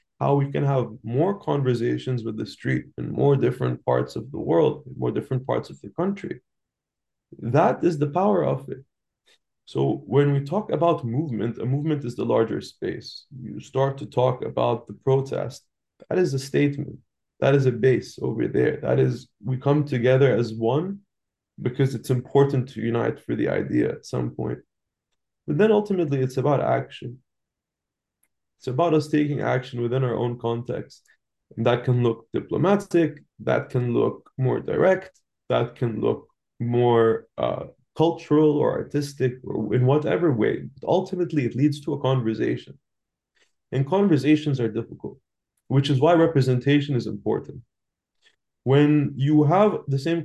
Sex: male